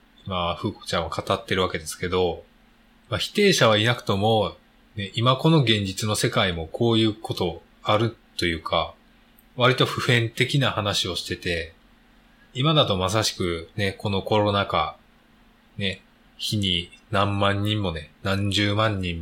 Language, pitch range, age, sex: Japanese, 95-130 Hz, 20-39, male